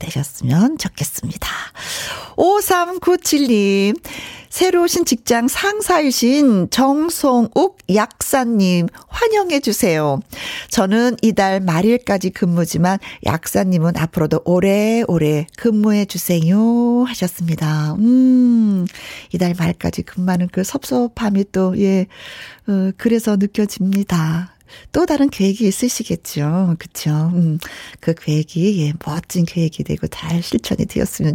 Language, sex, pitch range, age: Korean, female, 175-255 Hz, 40-59